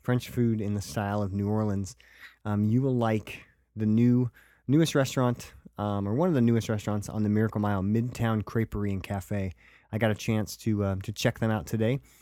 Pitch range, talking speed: 105-120 Hz, 205 wpm